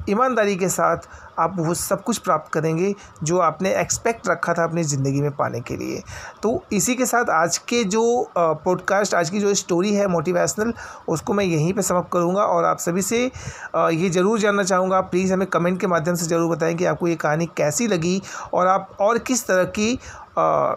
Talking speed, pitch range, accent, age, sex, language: 195 wpm, 175-205 Hz, native, 30-49, male, Hindi